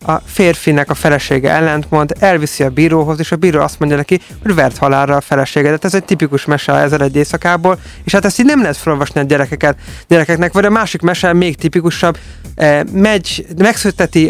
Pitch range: 145-180 Hz